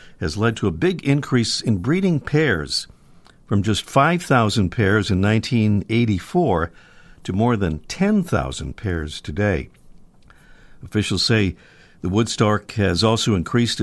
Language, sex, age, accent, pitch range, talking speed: English, male, 50-69, American, 90-125 Hz, 120 wpm